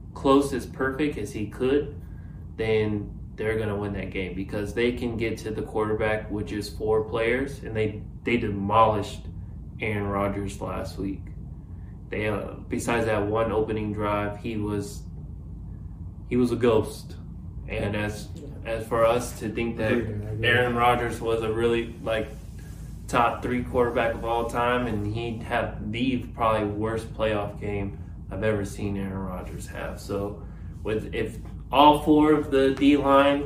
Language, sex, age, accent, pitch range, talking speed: English, male, 20-39, American, 100-115 Hz, 150 wpm